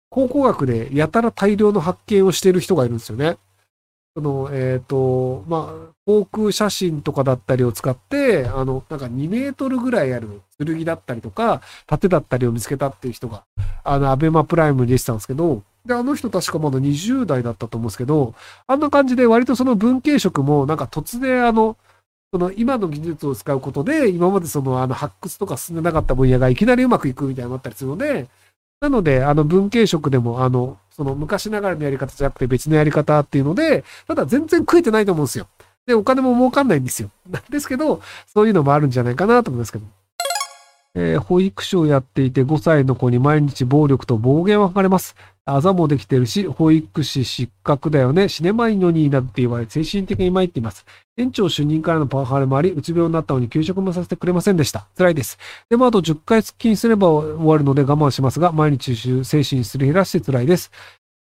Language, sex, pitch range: Japanese, male, 130-200 Hz